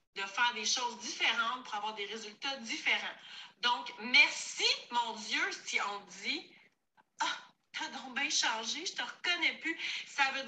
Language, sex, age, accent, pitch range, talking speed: French, female, 30-49, Canadian, 225-325 Hz, 165 wpm